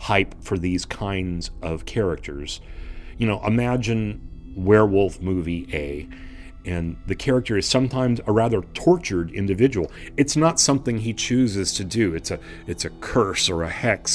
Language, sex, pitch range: English, male, 85-100 Hz